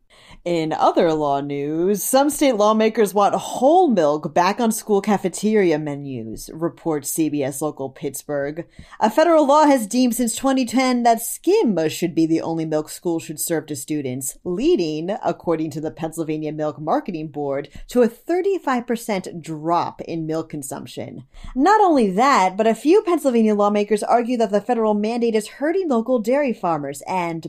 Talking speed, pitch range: 155 wpm, 160-240 Hz